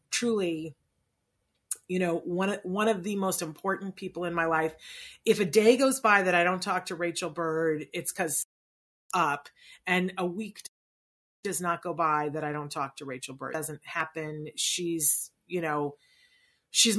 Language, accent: English, American